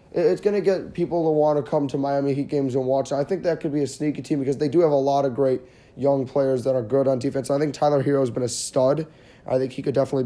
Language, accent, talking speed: English, American, 300 wpm